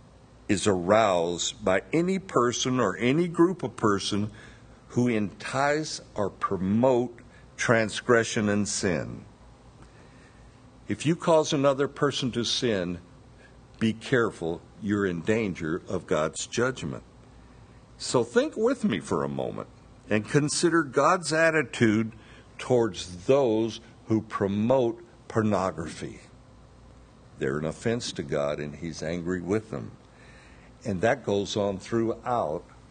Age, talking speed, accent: 60-79, 115 wpm, American